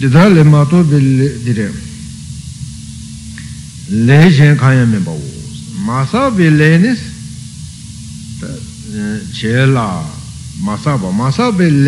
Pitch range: 120-170 Hz